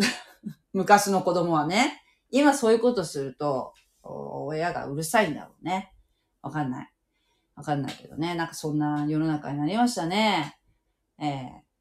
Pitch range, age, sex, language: 150-235 Hz, 40-59, female, Japanese